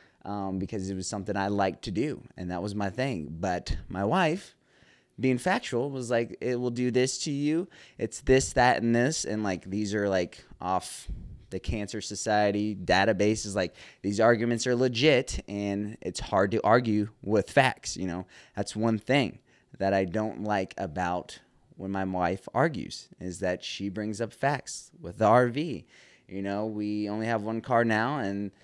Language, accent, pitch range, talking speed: English, American, 95-120 Hz, 180 wpm